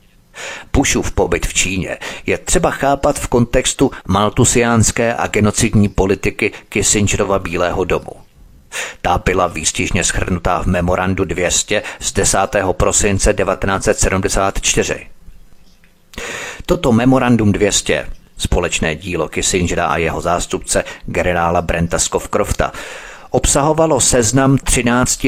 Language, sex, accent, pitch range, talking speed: Czech, male, native, 95-110 Hz, 100 wpm